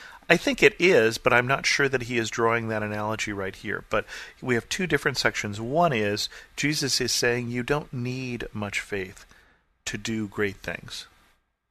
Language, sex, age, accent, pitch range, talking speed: English, male, 40-59, American, 105-125 Hz, 185 wpm